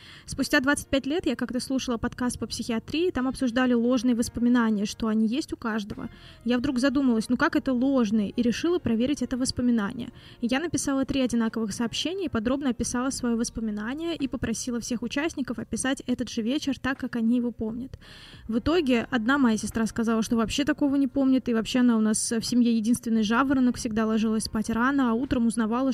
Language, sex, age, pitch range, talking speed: Russian, female, 20-39, 230-265 Hz, 185 wpm